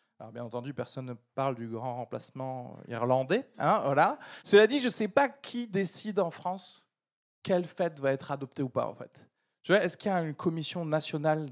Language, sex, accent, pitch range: French, male, French, 140-205 Hz